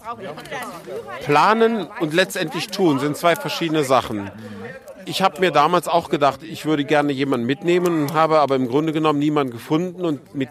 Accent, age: German, 50-69